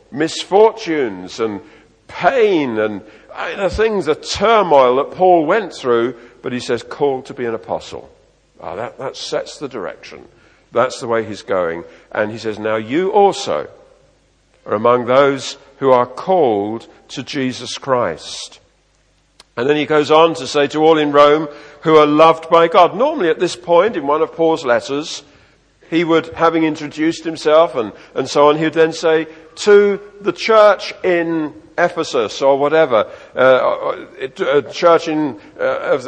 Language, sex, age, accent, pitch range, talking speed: English, male, 50-69, British, 140-195 Hz, 165 wpm